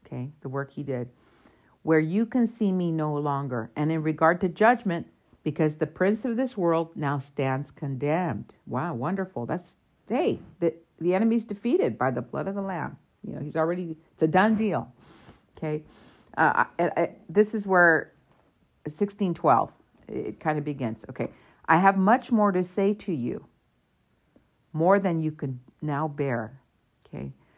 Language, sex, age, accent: English, female, 50-69, American